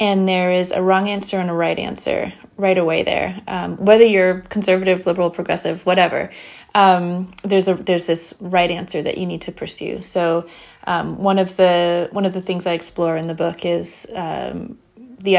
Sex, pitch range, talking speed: female, 175-205 Hz, 190 wpm